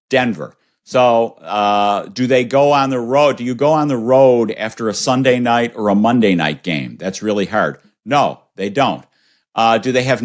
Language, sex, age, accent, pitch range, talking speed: English, male, 50-69, American, 105-130 Hz, 200 wpm